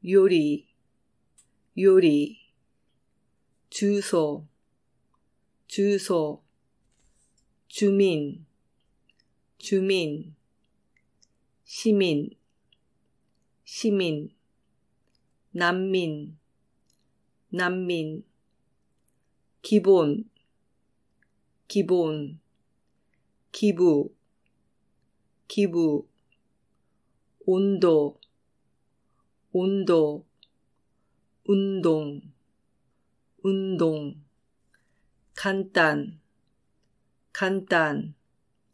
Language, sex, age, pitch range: Japanese, female, 30-49, 150-195 Hz